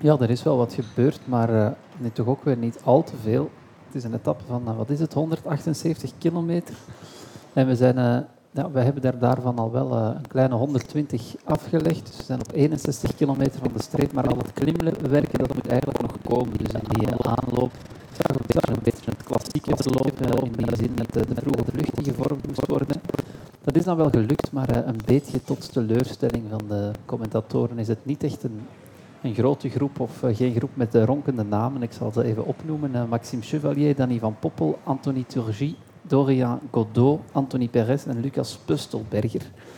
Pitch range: 120-140 Hz